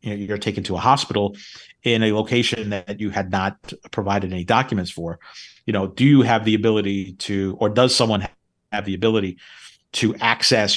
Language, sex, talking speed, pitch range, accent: English, male, 180 wpm, 100-120 Hz, American